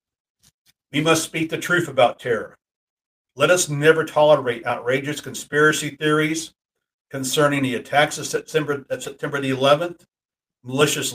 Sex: male